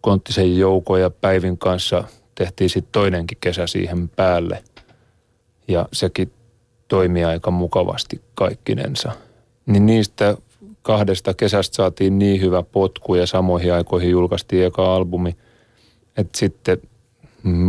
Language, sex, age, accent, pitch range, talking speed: Finnish, male, 30-49, native, 90-115 Hz, 110 wpm